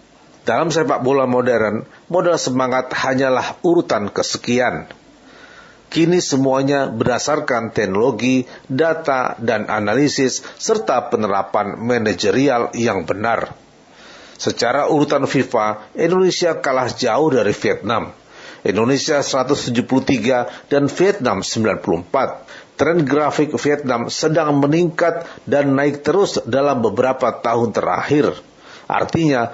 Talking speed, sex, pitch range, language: 95 wpm, male, 125-150 Hz, Indonesian